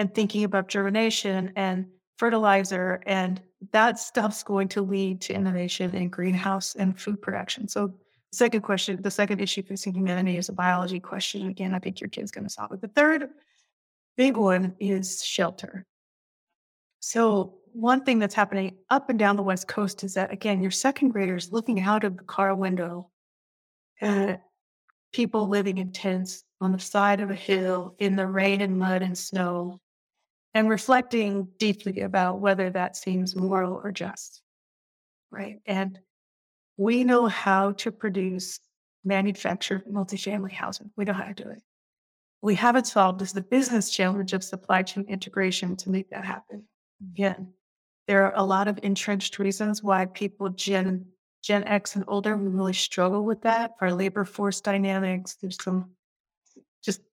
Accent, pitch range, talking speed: American, 185-210 Hz, 165 wpm